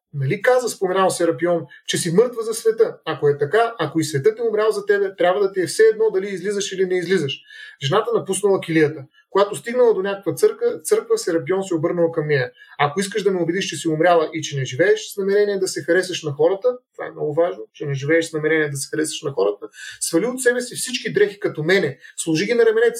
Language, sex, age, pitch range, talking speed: Bulgarian, male, 30-49, 165-235 Hz, 230 wpm